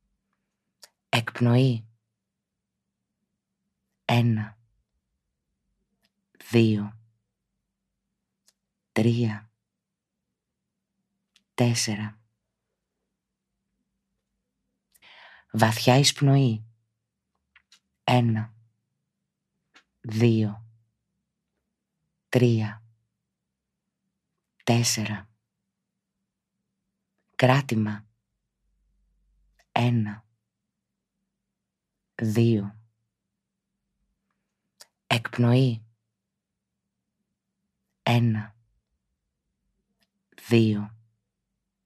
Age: 40-59